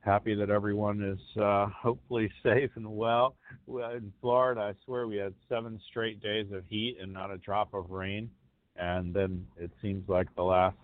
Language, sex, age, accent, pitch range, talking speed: English, male, 50-69, American, 90-105 Hz, 185 wpm